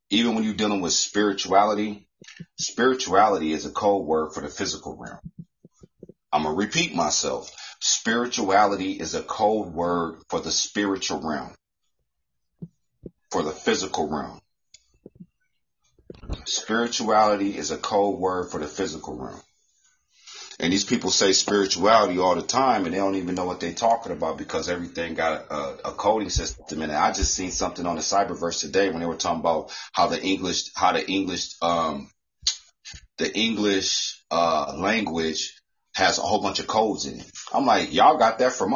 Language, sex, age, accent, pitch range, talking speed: English, male, 40-59, American, 85-120 Hz, 165 wpm